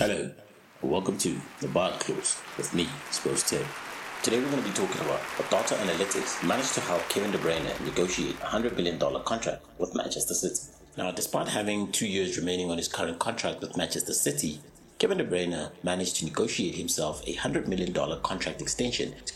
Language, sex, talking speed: English, male, 185 wpm